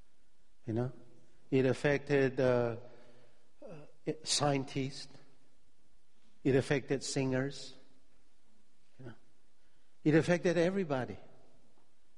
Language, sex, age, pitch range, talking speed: English, male, 50-69, 115-155 Hz, 75 wpm